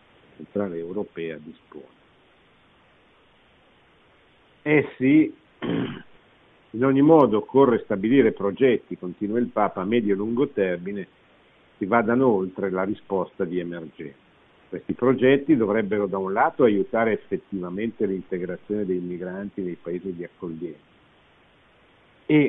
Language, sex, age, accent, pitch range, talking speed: Italian, male, 50-69, native, 90-110 Hz, 110 wpm